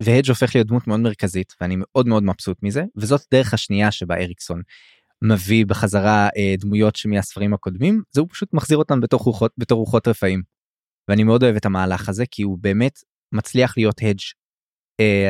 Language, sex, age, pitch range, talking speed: Hebrew, male, 20-39, 100-120 Hz, 175 wpm